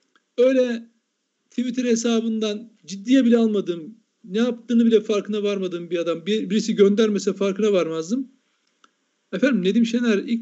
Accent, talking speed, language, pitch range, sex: native, 125 wpm, Turkish, 195-245 Hz, male